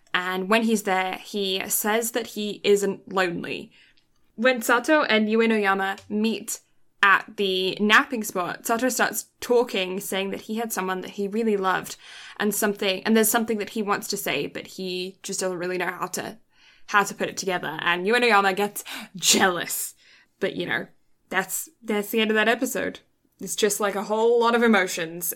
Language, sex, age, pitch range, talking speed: English, female, 10-29, 195-245 Hz, 180 wpm